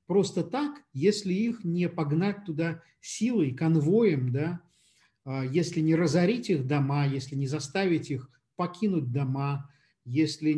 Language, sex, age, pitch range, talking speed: Russian, male, 50-69, 130-165 Hz, 125 wpm